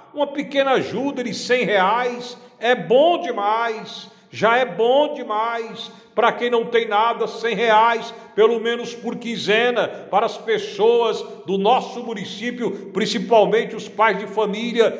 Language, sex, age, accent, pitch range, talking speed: Portuguese, male, 60-79, Brazilian, 175-250 Hz, 140 wpm